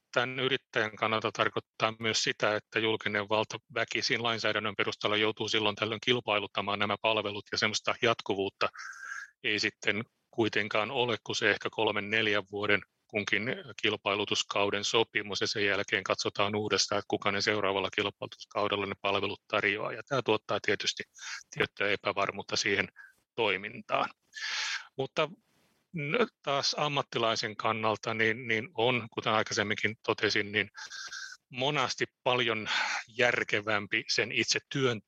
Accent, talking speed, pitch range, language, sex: native, 120 wpm, 105-125 Hz, Finnish, male